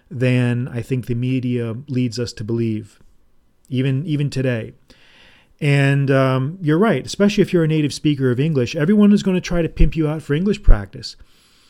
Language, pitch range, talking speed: English, 120-150 Hz, 180 wpm